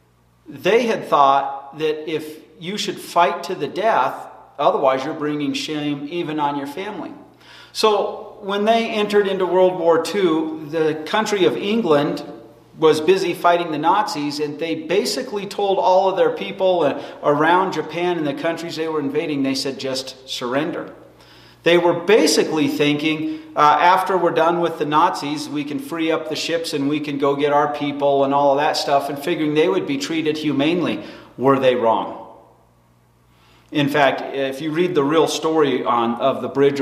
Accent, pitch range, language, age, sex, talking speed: American, 135-165 Hz, English, 40-59, male, 175 wpm